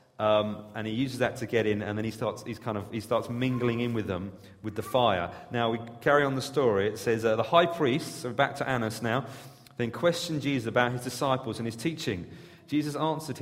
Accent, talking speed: British, 235 wpm